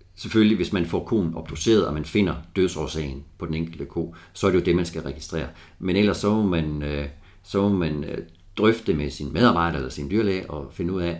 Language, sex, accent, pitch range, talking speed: Danish, male, native, 75-95 Hz, 220 wpm